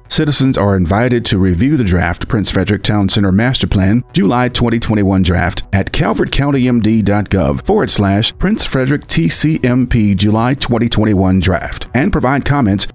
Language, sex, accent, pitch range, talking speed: English, male, American, 100-130 Hz, 135 wpm